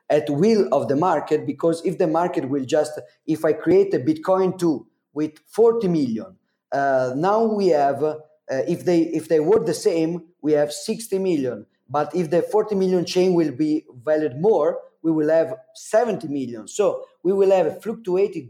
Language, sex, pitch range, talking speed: English, male, 135-185 Hz, 185 wpm